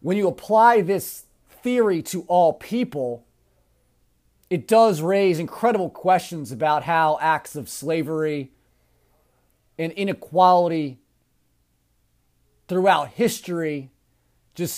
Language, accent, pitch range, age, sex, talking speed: English, American, 135-185 Hz, 30-49, male, 95 wpm